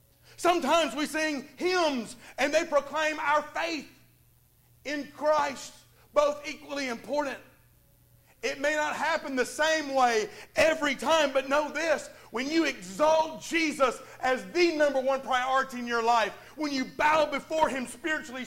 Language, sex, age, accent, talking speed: English, male, 40-59, American, 145 wpm